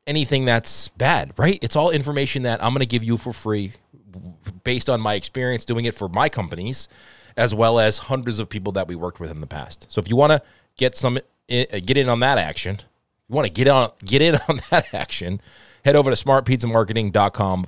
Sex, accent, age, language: male, American, 30-49, English